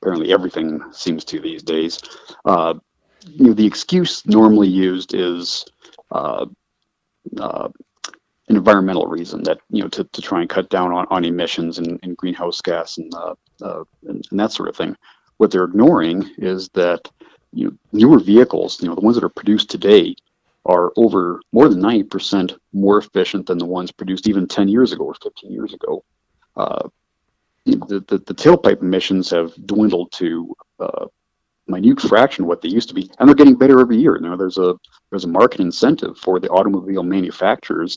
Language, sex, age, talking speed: English, male, 40-59, 180 wpm